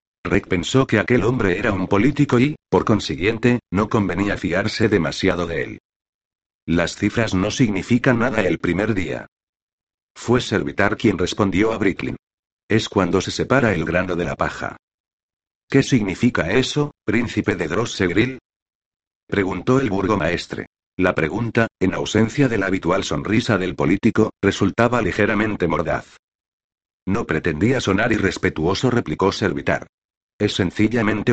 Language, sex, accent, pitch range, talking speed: Spanish, male, Spanish, 95-115 Hz, 135 wpm